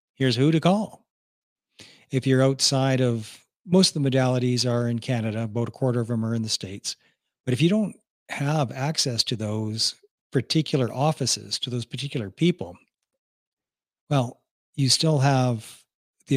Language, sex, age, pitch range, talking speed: English, male, 50-69, 120-145 Hz, 160 wpm